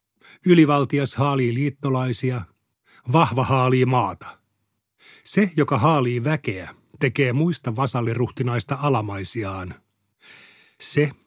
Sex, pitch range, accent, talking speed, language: male, 105-135 Hz, native, 80 wpm, Finnish